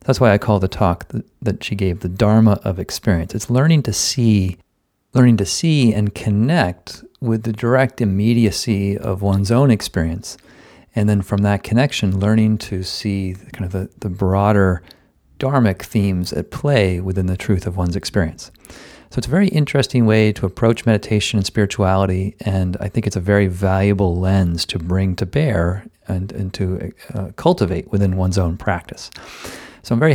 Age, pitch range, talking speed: 40-59, 95-115 Hz, 175 wpm